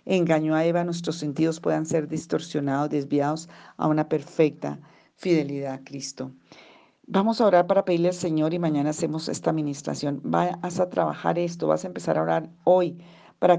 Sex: female